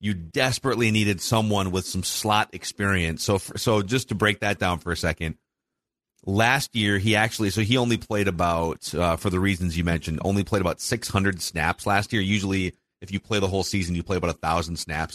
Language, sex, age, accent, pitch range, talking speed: English, male, 30-49, American, 95-120 Hz, 210 wpm